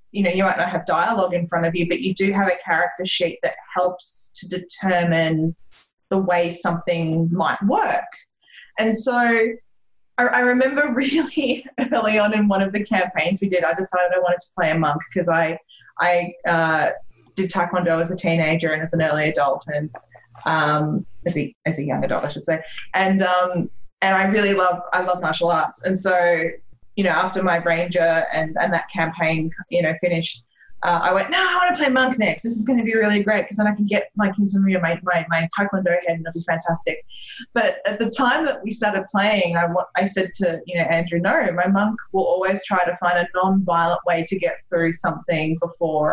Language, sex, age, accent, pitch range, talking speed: English, female, 20-39, Australian, 165-210 Hz, 210 wpm